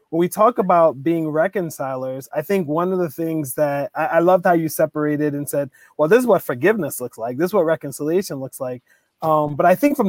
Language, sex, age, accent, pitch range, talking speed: English, male, 30-49, American, 150-180 Hz, 230 wpm